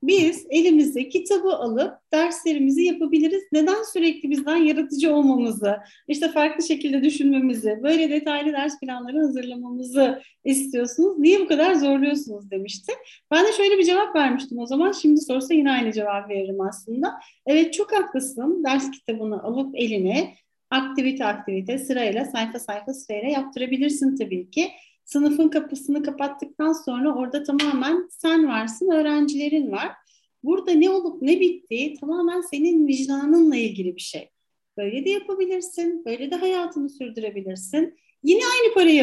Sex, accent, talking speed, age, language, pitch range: female, native, 135 wpm, 40-59, Turkish, 250-325 Hz